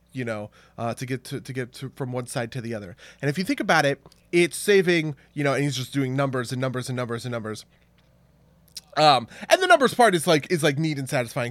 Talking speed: 250 wpm